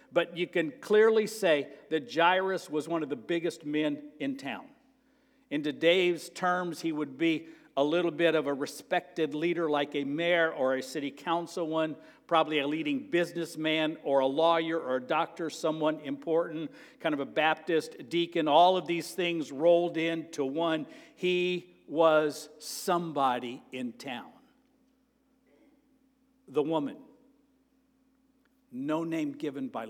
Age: 60-79